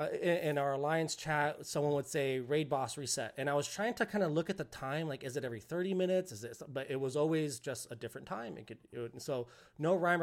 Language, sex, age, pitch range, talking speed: English, male, 30-49, 125-160 Hz, 265 wpm